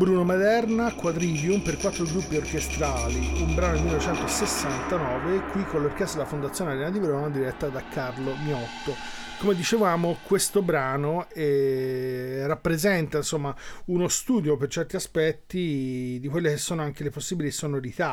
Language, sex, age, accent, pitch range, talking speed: Italian, male, 40-59, native, 145-180 Hz, 140 wpm